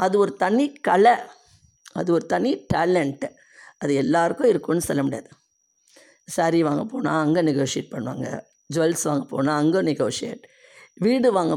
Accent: native